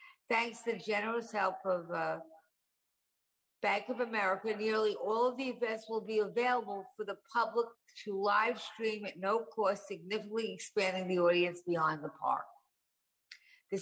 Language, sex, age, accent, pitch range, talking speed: English, female, 50-69, American, 190-230 Hz, 150 wpm